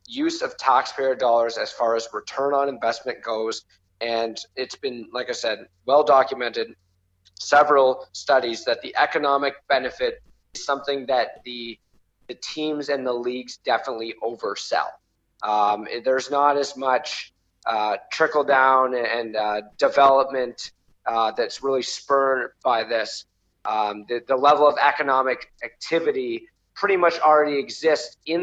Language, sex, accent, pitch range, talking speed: English, male, American, 120-145 Hz, 140 wpm